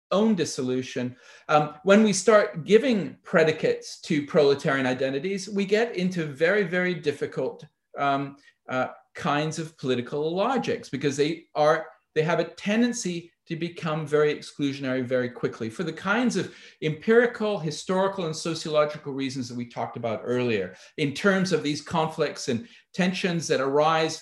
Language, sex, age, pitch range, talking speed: English, male, 40-59, 145-195 Hz, 145 wpm